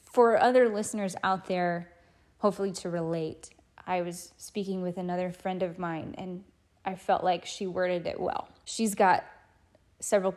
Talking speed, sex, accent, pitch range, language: 155 wpm, female, American, 180-215 Hz, English